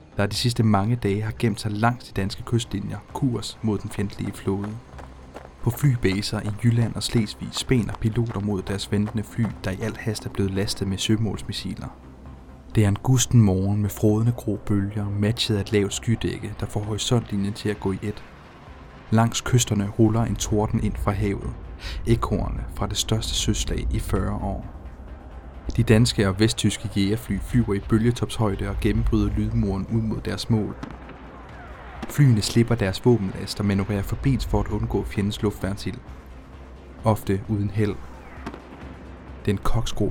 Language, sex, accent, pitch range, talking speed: Danish, male, native, 95-115 Hz, 165 wpm